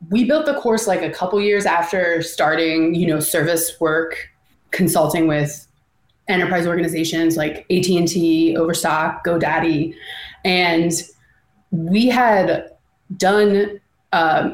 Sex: female